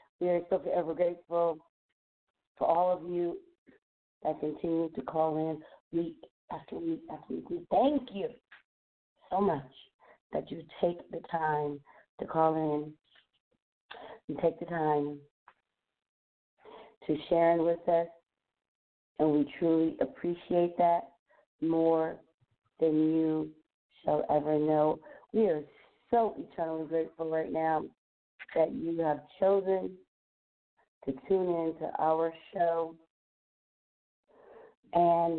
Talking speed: 115 wpm